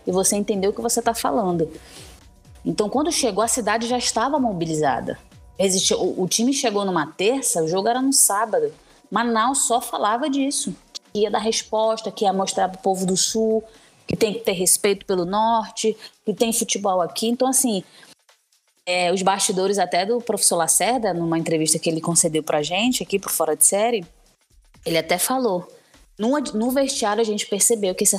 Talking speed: 185 wpm